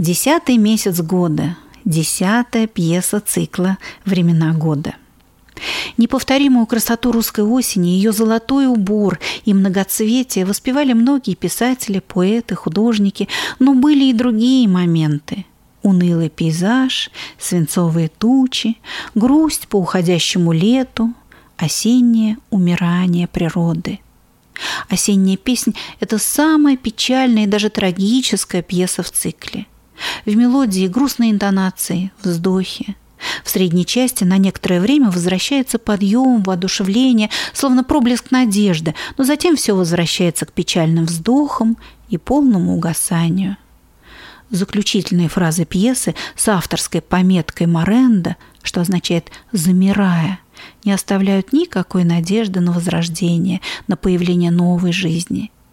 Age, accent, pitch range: 40-59, native, 180-235 Hz